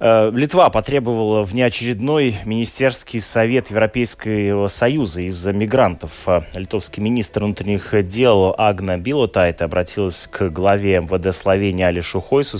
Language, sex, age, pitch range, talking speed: Russian, male, 20-39, 95-115 Hz, 105 wpm